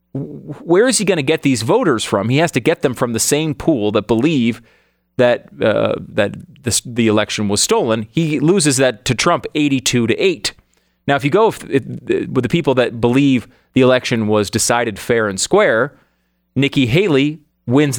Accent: American